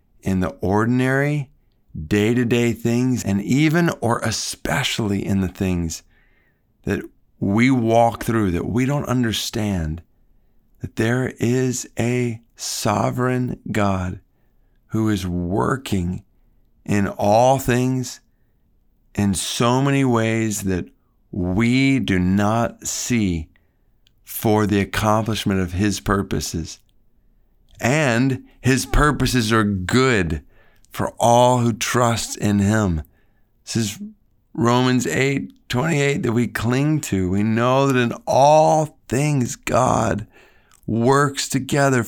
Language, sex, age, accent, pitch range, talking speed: English, male, 50-69, American, 105-130 Hz, 110 wpm